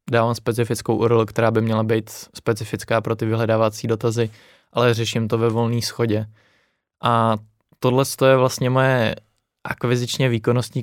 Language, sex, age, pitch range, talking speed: Czech, male, 20-39, 115-120 Hz, 140 wpm